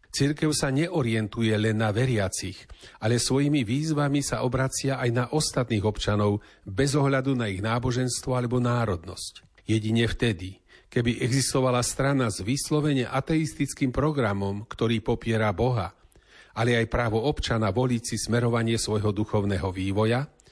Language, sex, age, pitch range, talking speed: Slovak, male, 40-59, 110-135 Hz, 130 wpm